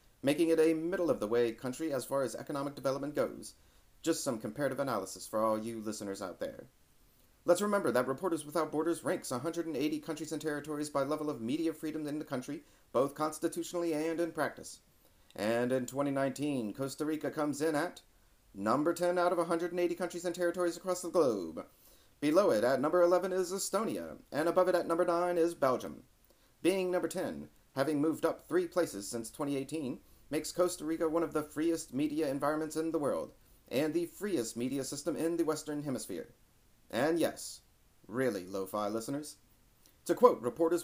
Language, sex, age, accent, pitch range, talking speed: English, male, 40-59, American, 140-170 Hz, 175 wpm